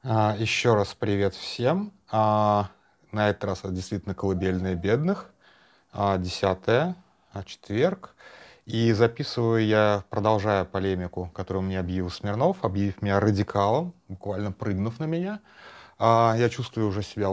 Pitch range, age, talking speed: 100-130 Hz, 30-49, 110 wpm